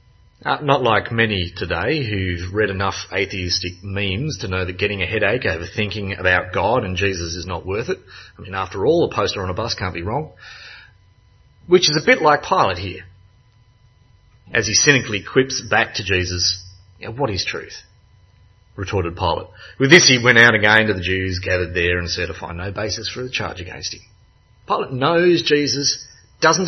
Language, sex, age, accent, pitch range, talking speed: English, male, 30-49, Australian, 95-130 Hz, 185 wpm